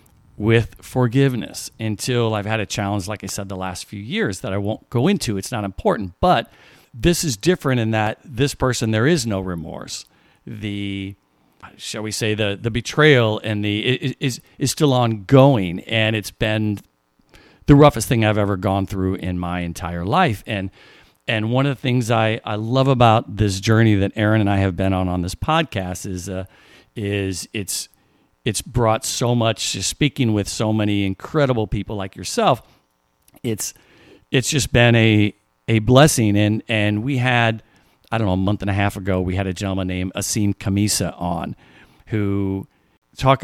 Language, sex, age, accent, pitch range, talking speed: English, male, 50-69, American, 95-115 Hz, 180 wpm